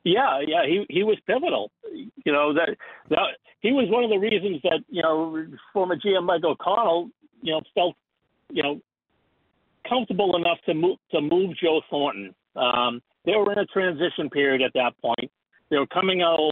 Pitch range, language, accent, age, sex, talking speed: 135-180 Hz, English, American, 60-79, male, 190 wpm